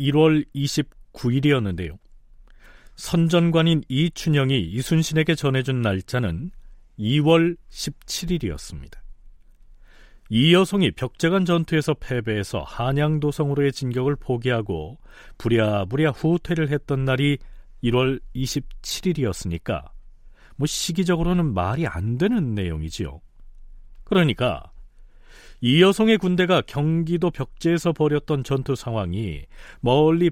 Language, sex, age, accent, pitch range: Korean, male, 40-59, native, 115-160 Hz